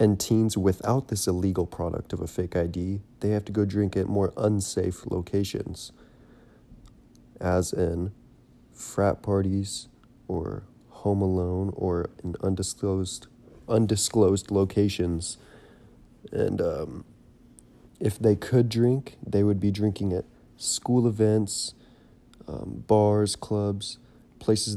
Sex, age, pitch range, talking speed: male, 30-49, 95-110 Hz, 115 wpm